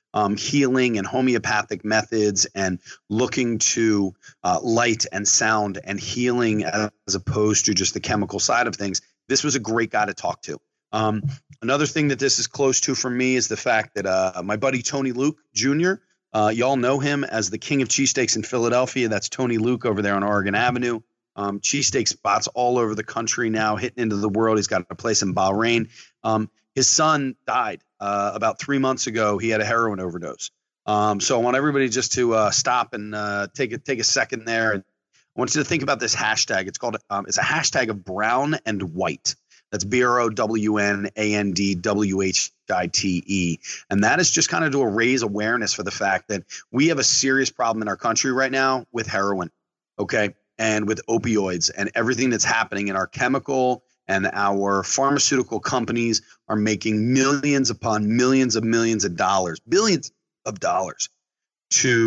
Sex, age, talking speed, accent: male, 30-49, 200 wpm, American